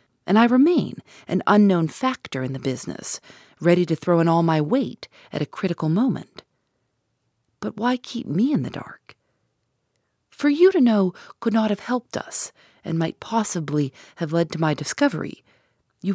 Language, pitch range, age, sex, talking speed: English, 160-225 Hz, 40-59, female, 165 wpm